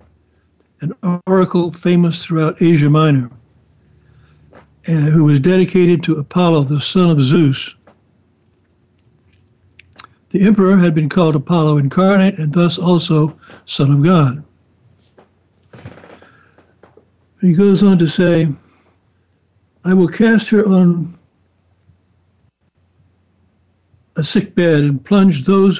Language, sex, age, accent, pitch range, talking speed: English, male, 60-79, American, 110-175 Hz, 100 wpm